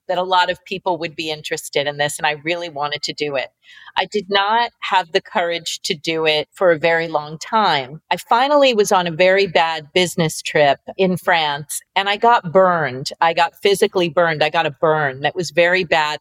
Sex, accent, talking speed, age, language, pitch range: female, American, 215 wpm, 40-59, English, 160-200 Hz